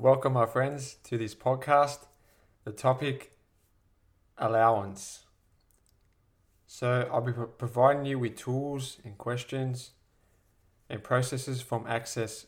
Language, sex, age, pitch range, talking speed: English, male, 20-39, 100-125 Hz, 105 wpm